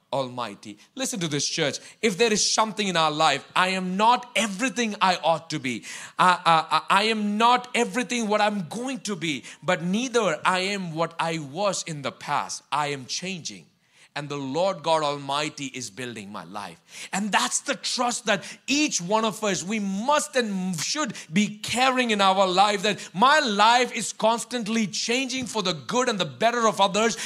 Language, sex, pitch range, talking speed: English, male, 160-225 Hz, 185 wpm